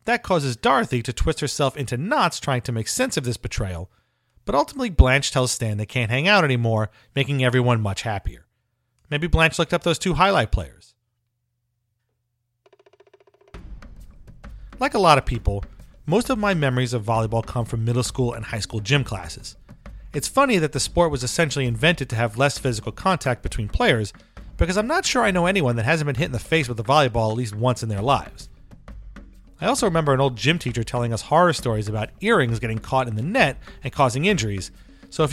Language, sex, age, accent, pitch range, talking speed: English, male, 40-59, American, 115-160 Hz, 200 wpm